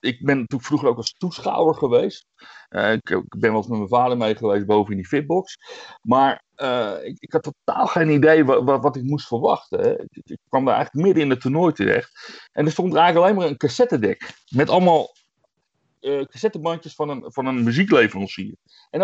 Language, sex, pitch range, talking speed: Dutch, male, 125-185 Hz, 210 wpm